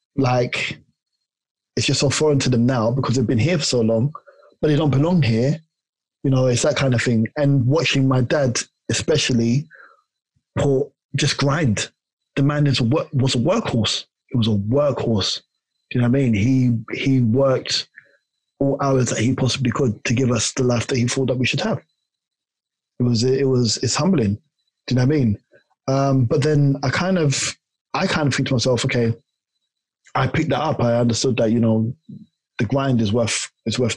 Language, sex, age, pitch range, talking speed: English, male, 20-39, 115-135 Hz, 200 wpm